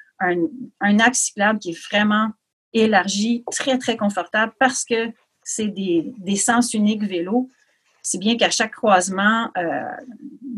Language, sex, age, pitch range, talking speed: French, female, 40-59, 200-250 Hz, 140 wpm